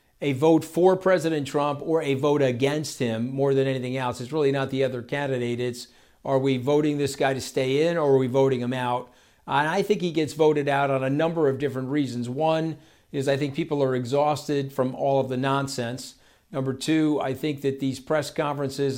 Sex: male